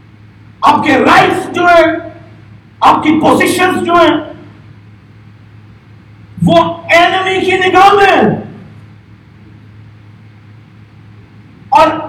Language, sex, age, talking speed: Urdu, male, 50-69, 75 wpm